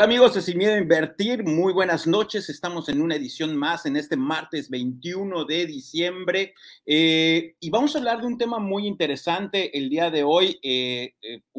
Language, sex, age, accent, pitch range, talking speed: Spanish, male, 40-59, Mexican, 125-175 Hz, 185 wpm